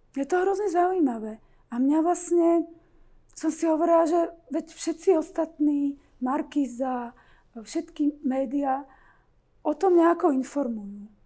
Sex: female